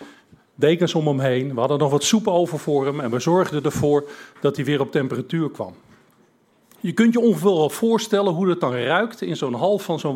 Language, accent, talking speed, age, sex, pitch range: Dutch, Dutch, 220 wpm, 40-59, male, 130-180 Hz